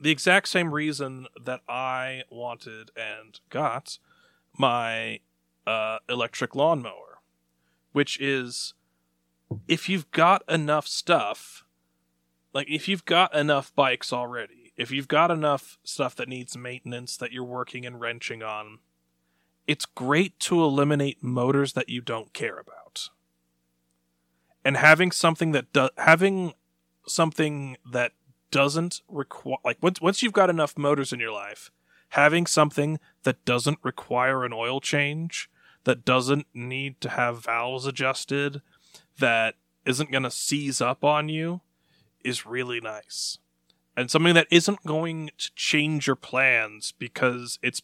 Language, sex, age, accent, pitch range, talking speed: English, male, 30-49, American, 110-150 Hz, 135 wpm